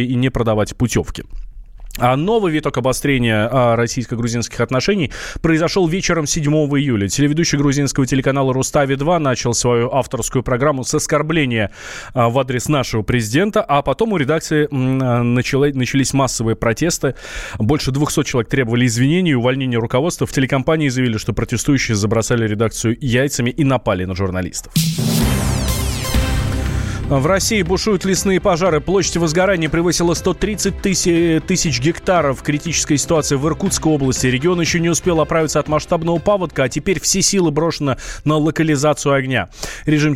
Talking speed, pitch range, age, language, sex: 135 wpm, 120-165 Hz, 20-39, Russian, male